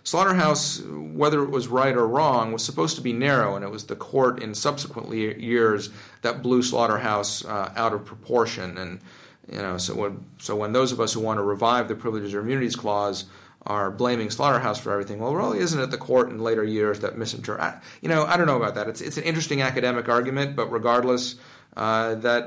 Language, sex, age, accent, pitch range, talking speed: English, male, 40-59, American, 105-125 Hz, 210 wpm